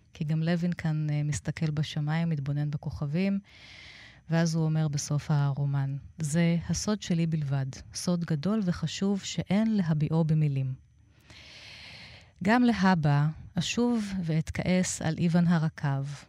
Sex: female